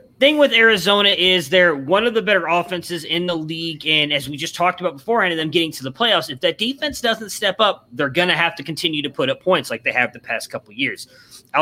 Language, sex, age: English, male, 30-49